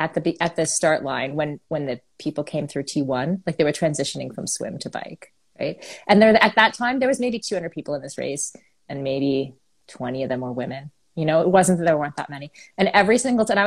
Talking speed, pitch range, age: 245 wpm, 145-220 Hz, 30-49